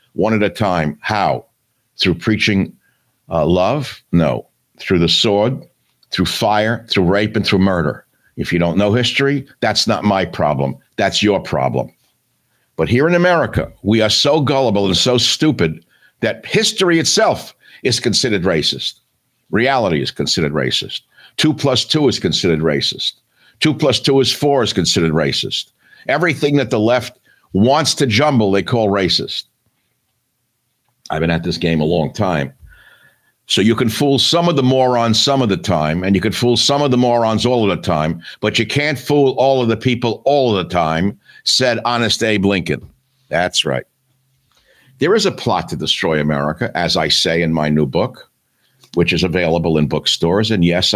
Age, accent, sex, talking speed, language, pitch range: 60-79, American, male, 175 wpm, English, 90-130 Hz